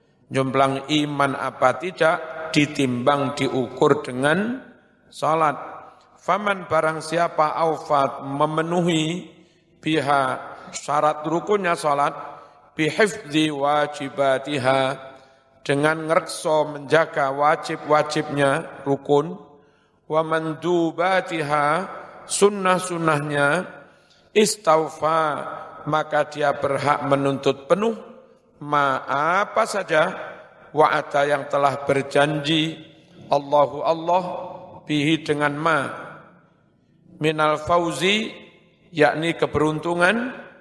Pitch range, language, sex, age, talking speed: 145-170 Hz, Indonesian, male, 50-69, 70 wpm